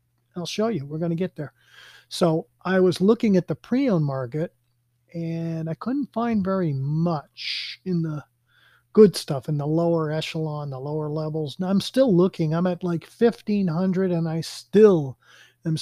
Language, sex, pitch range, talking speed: English, male, 150-180 Hz, 165 wpm